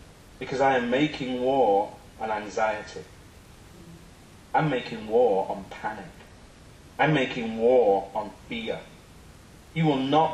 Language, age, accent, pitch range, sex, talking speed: English, 30-49, British, 115-155 Hz, male, 115 wpm